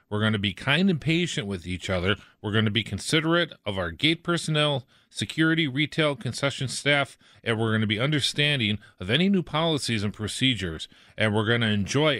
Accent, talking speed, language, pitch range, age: American, 195 wpm, English, 110-140 Hz, 40-59